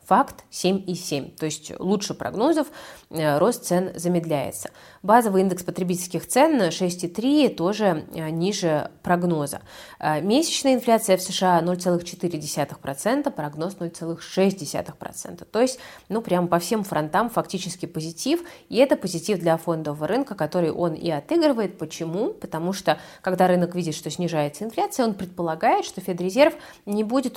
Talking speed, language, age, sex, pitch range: 135 wpm, Russian, 20-39, female, 160-205 Hz